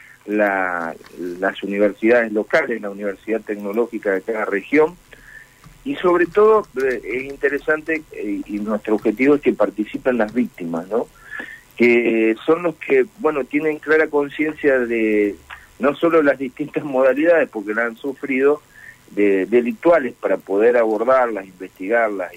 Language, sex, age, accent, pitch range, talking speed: Spanish, male, 40-59, Argentinian, 110-155 Hz, 135 wpm